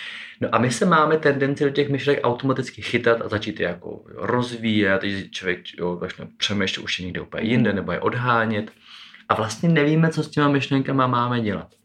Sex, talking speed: male, 190 wpm